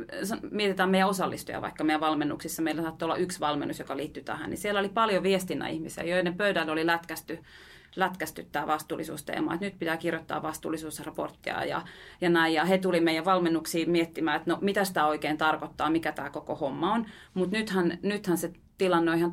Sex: female